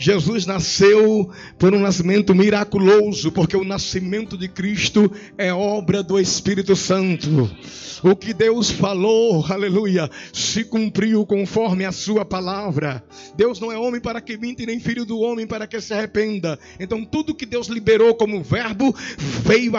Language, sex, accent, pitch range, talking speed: English, male, Brazilian, 200-280 Hz, 150 wpm